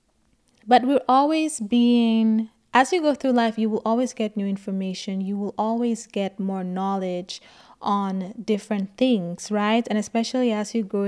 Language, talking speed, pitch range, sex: English, 160 wpm, 205-240 Hz, female